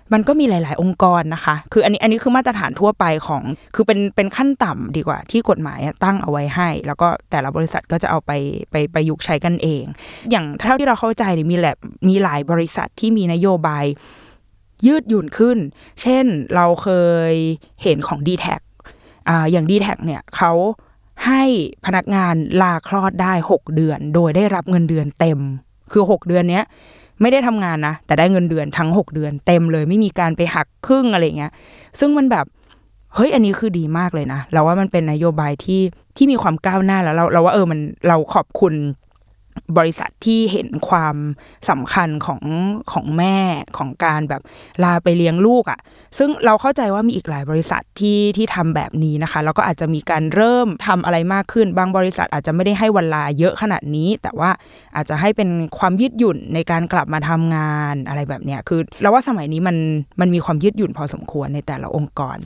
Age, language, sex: 20-39, Thai, female